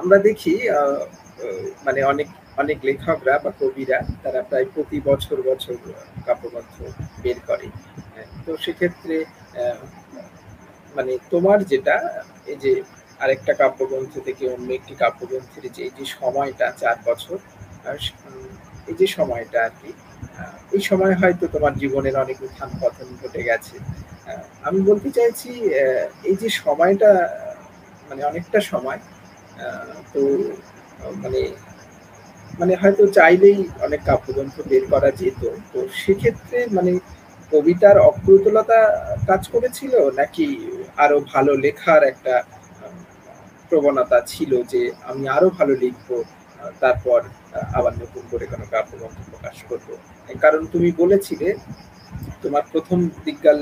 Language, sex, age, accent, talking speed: Bengali, male, 50-69, native, 95 wpm